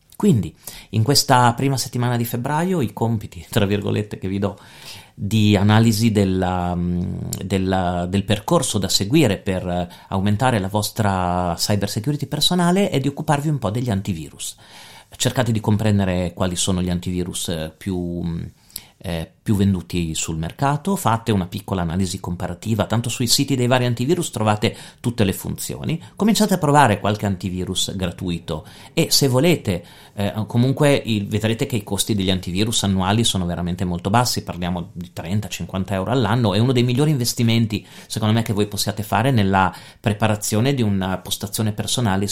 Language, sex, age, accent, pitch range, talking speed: Italian, male, 40-59, native, 95-120 Hz, 155 wpm